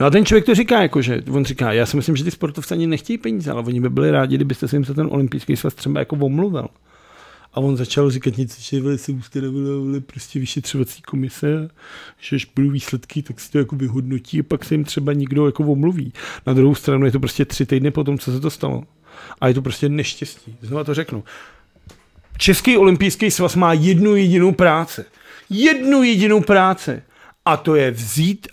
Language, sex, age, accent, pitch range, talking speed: Czech, male, 40-59, native, 130-160 Hz, 210 wpm